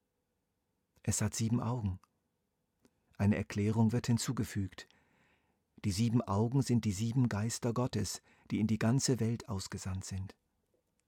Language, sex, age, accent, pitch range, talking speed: German, male, 50-69, German, 100-120 Hz, 125 wpm